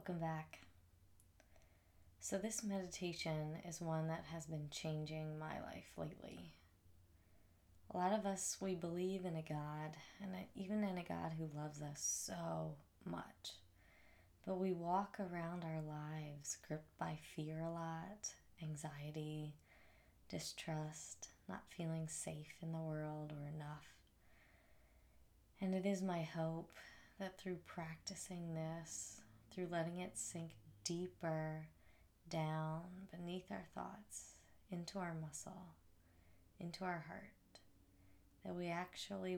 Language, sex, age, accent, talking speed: English, female, 20-39, American, 125 wpm